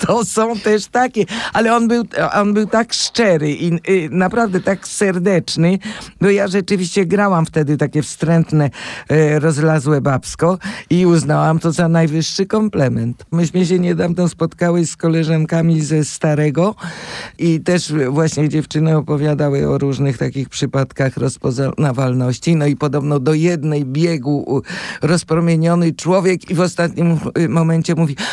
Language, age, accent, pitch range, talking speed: Polish, 50-69, native, 140-175 Hz, 130 wpm